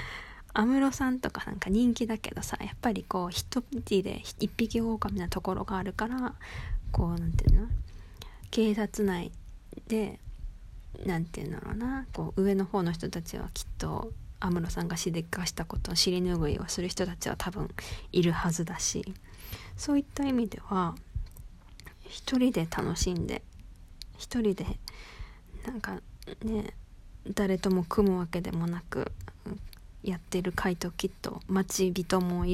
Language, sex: Japanese, female